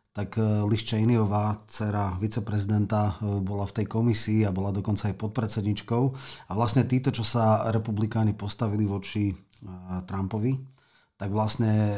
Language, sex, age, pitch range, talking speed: Slovak, male, 30-49, 105-115 Hz, 120 wpm